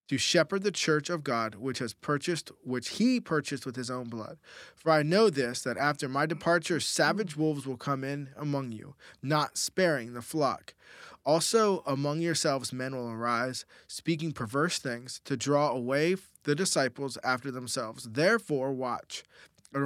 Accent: American